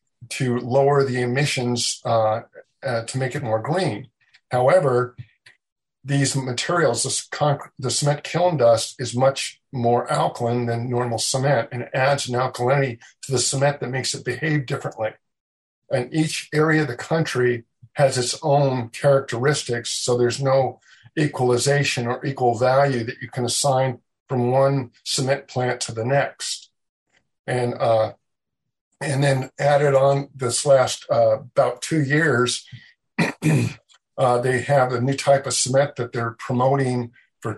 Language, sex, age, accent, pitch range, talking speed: English, male, 50-69, American, 120-140 Hz, 145 wpm